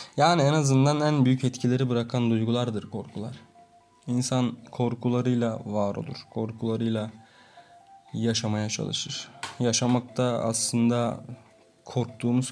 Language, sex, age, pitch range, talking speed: Turkish, male, 20-39, 115-135 Hz, 95 wpm